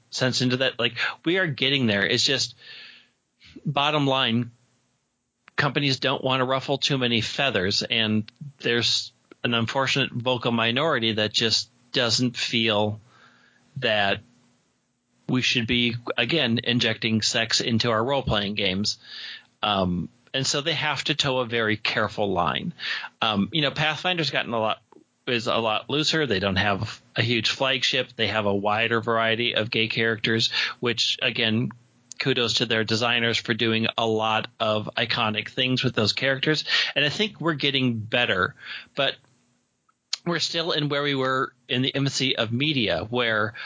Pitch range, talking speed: 115-135 Hz, 155 wpm